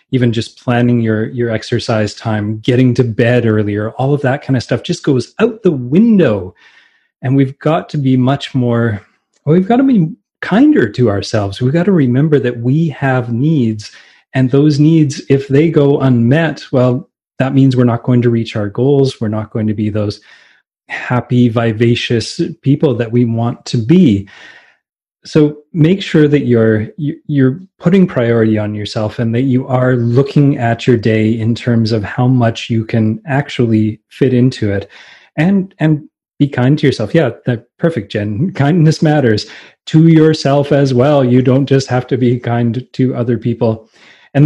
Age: 30-49